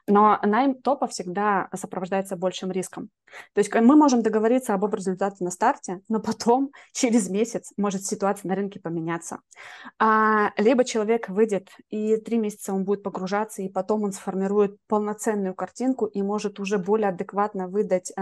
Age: 20-39